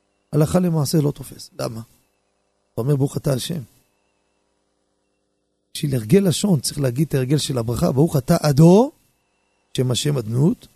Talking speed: 140 wpm